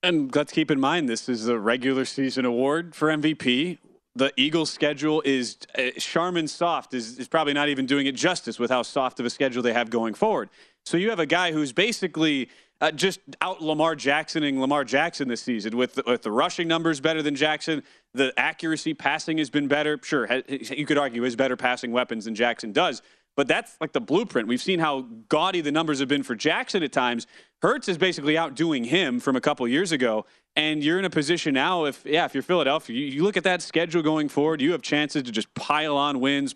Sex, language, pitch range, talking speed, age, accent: male, English, 130-160 Hz, 220 wpm, 30-49, American